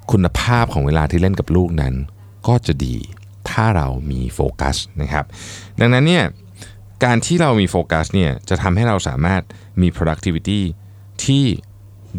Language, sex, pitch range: Thai, male, 80-105 Hz